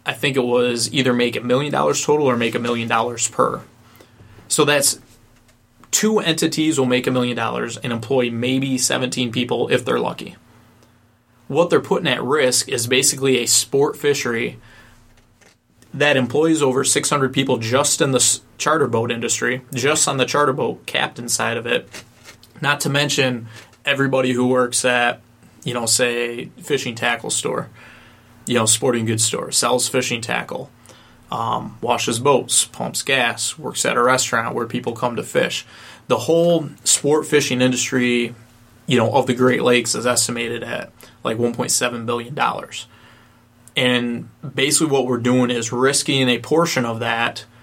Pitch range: 120-135 Hz